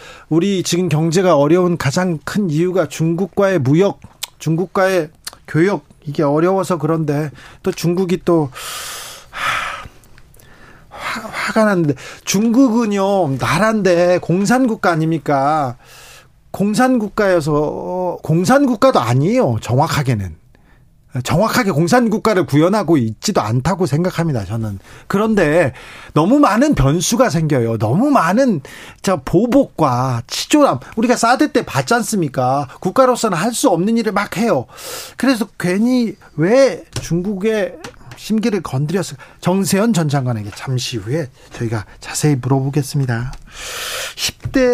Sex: male